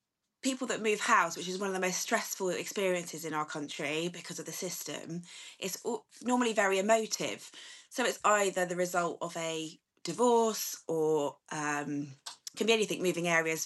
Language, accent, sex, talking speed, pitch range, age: English, British, female, 170 wpm, 170-225 Hz, 20-39